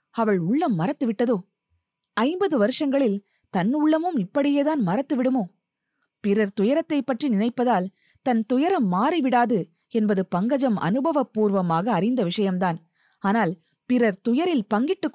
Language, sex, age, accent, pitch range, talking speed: Tamil, female, 20-39, native, 195-260 Hz, 100 wpm